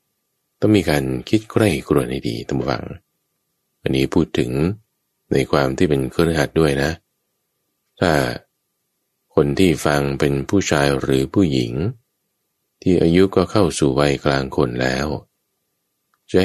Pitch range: 70-95 Hz